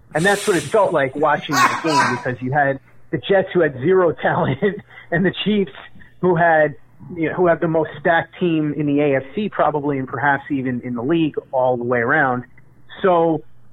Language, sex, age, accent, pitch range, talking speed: English, male, 30-49, American, 125-165 Hz, 200 wpm